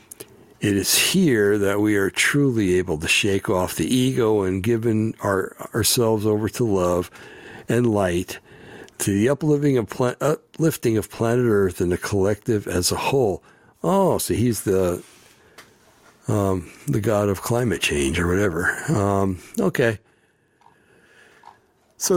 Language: English